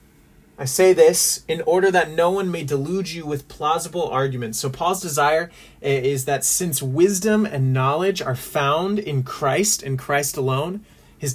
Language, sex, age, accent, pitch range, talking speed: English, male, 30-49, American, 135-175 Hz, 165 wpm